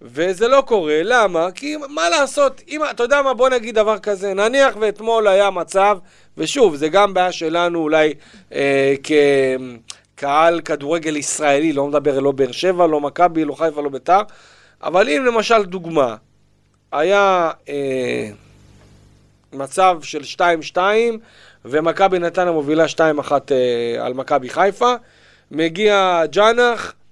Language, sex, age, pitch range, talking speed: Hebrew, male, 40-59, 145-205 Hz, 135 wpm